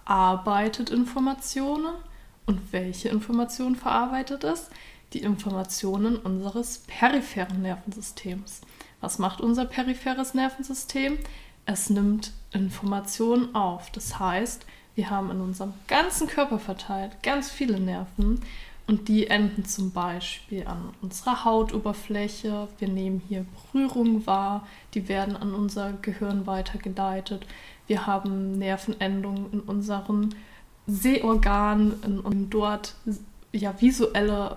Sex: female